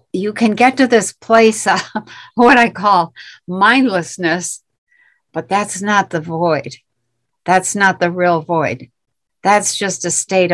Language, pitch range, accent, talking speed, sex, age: English, 170-205 Hz, American, 140 wpm, female, 60-79